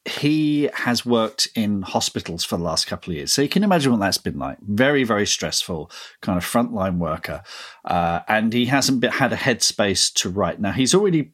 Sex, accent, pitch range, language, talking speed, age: male, British, 100-145 Hz, English, 200 wpm, 40-59